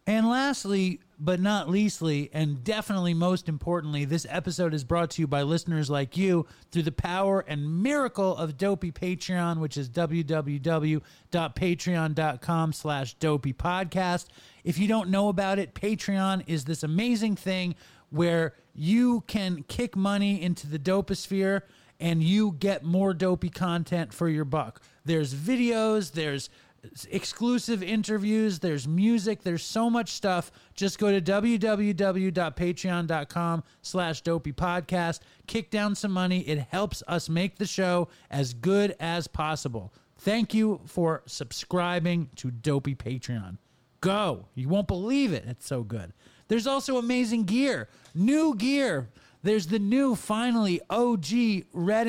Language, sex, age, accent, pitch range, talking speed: English, male, 30-49, American, 155-205 Hz, 135 wpm